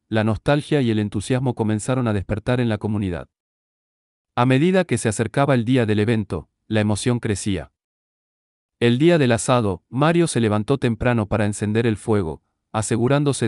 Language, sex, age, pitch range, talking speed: Spanish, male, 40-59, 105-130 Hz, 160 wpm